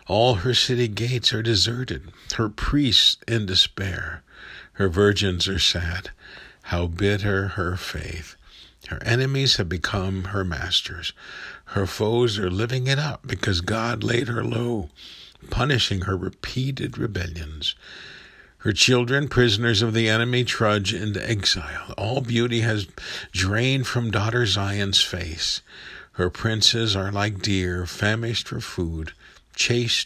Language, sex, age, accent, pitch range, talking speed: English, male, 50-69, American, 85-115 Hz, 130 wpm